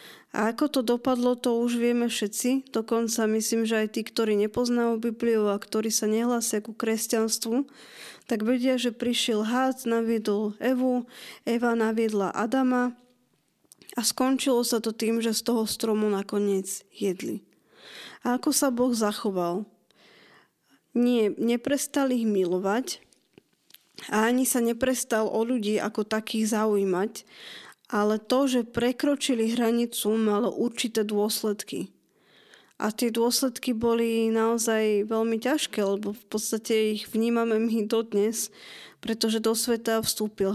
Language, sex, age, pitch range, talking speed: Slovak, female, 20-39, 215-240 Hz, 125 wpm